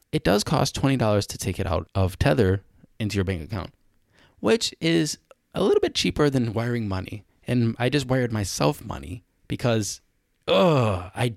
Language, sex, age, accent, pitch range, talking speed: English, male, 20-39, American, 95-130 Hz, 170 wpm